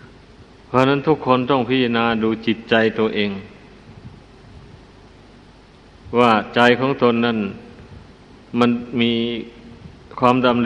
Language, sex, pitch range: Thai, male, 110-125 Hz